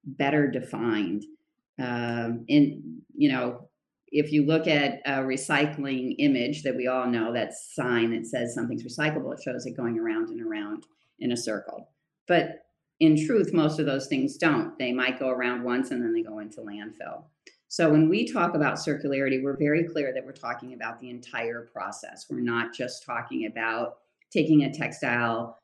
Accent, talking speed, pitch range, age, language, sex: American, 180 wpm, 120-155 Hz, 40-59, English, female